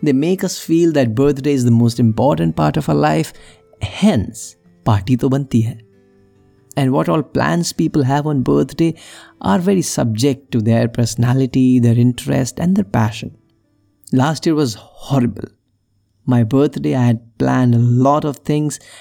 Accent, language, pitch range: native, Hindi, 115-140 Hz